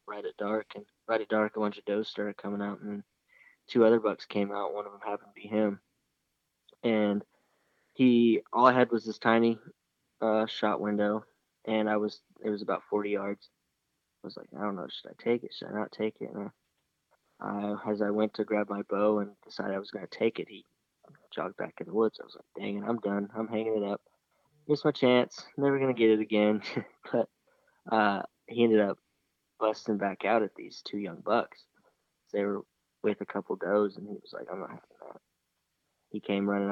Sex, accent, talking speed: male, American, 215 wpm